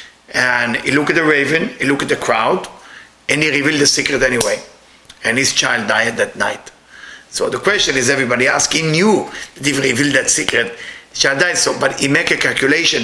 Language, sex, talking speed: English, male, 205 wpm